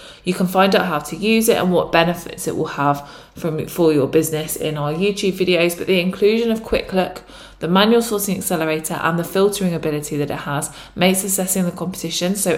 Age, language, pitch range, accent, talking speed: 20-39, English, 155-190 Hz, British, 205 wpm